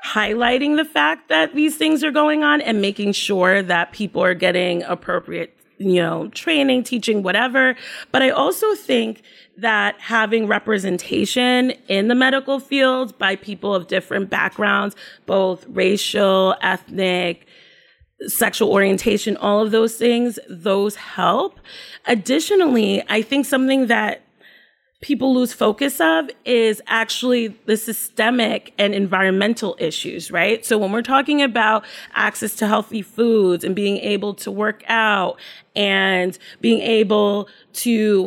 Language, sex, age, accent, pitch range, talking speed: English, female, 30-49, American, 200-250 Hz, 135 wpm